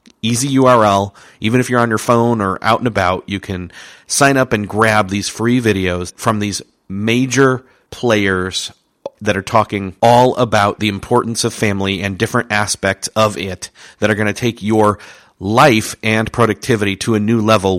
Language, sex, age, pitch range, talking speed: English, male, 40-59, 100-125 Hz, 175 wpm